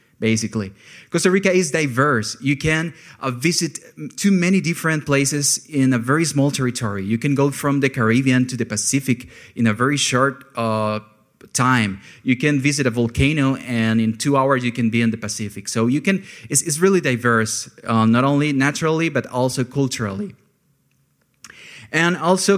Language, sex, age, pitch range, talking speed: English, male, 30-49, 115-145 Hz, 170 wpm